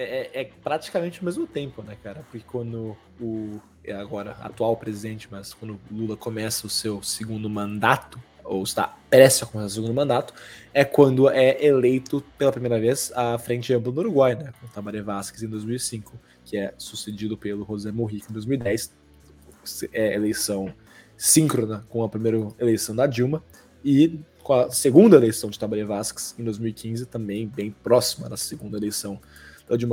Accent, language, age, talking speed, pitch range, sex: Brazilian, Portuguese, 20-39, 170 wpm, 105-125 Hz, male